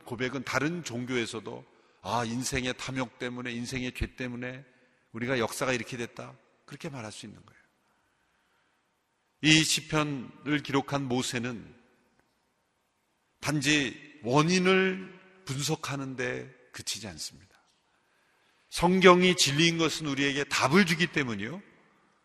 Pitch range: 125-160 Hz